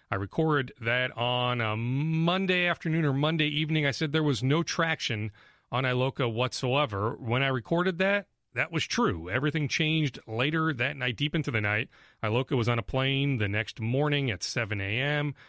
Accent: American